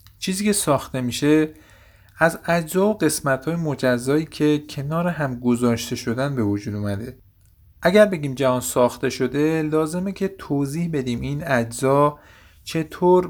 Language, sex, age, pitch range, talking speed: Persian, male, 50-69, 115-155 Hz, 130 wpm